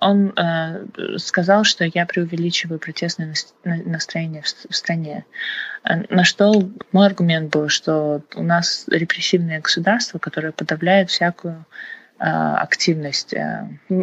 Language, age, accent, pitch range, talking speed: Russian, 20-39, native, 165-205 Hz, 100 wpm